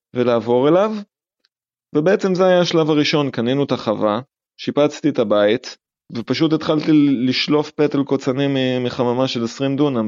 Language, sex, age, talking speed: Hebrew, male, 30-49, 130 wpm